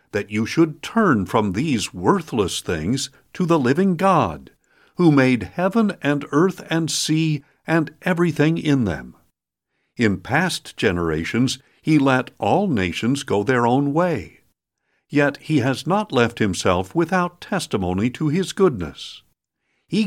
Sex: male